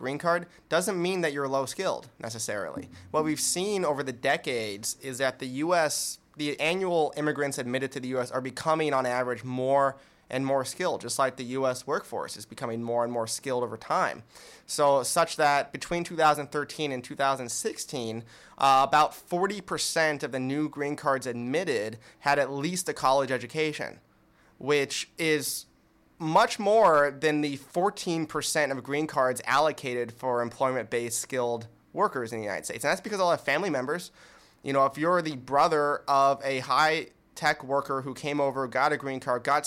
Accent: American